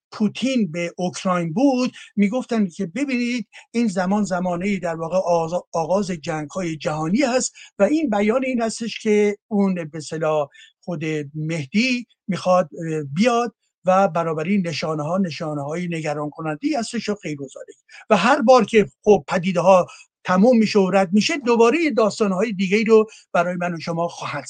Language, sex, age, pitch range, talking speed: Persian, male, 60-79, 180-240 Hz, 145 wpm